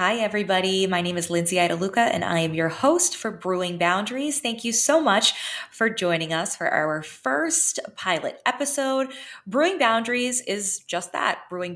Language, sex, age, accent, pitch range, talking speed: English, female, 20-39, American, 170-215 Hz, 170 wpm